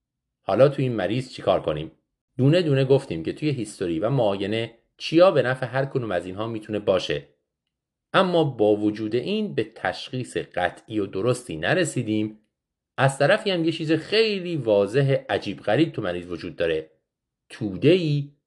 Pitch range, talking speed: 110-160 Hz, 155 wpm